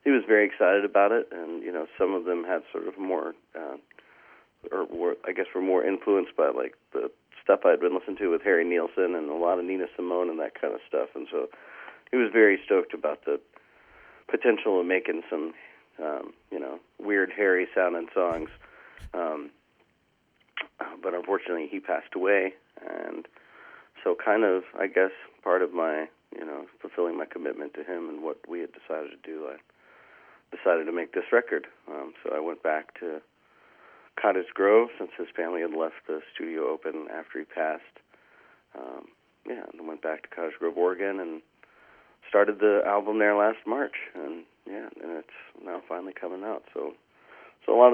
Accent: American